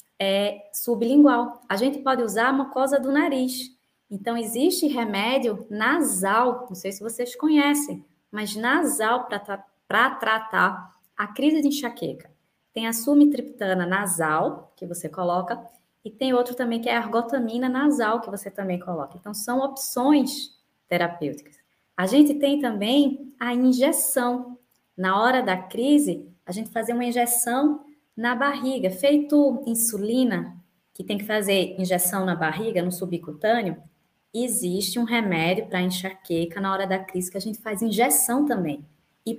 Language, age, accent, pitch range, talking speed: Portuguese, 20-39, Brazilian, 195-265 Hz, 145 wpm